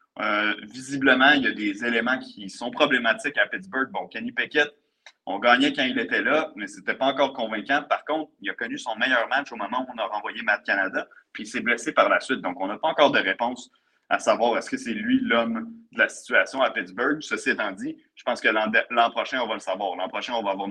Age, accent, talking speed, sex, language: 30-49, Canadian, 250 wpm, male, French